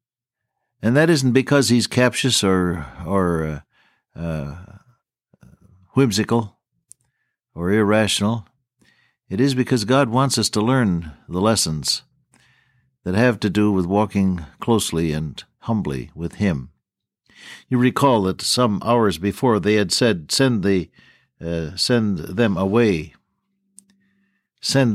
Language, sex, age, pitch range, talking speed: English, male, 60-79, 90-130 Hz, 120 wpm